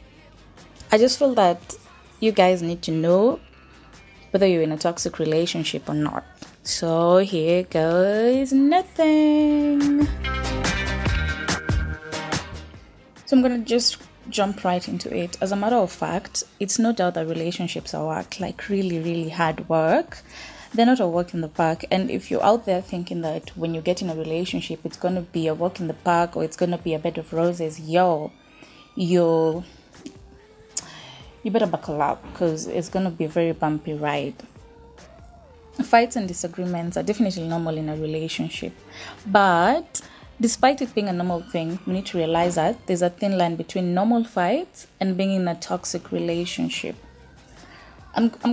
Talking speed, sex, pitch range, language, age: 165 wpm, female, 165-205 Hz, English, 20-39